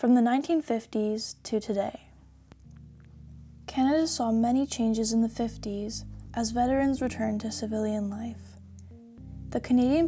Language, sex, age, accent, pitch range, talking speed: English, female, 10-29, American, 210-240 Hz, 120 wpm